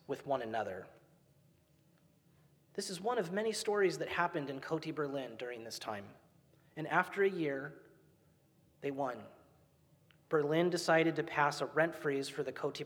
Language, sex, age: English, male, 30-49